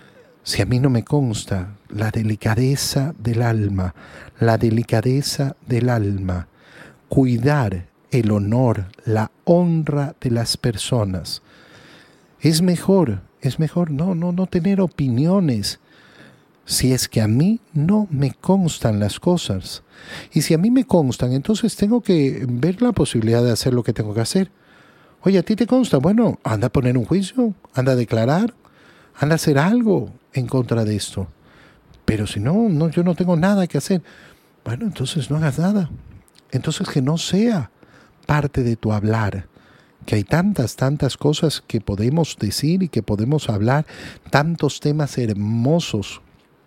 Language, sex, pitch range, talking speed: Spanish, male, 115-165 Hz, 155 wpm